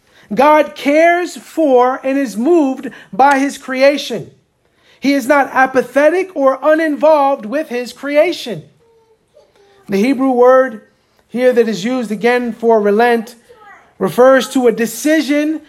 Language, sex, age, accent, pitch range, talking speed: English, male, 40-59, American, 230-285 Hz, 120 wpm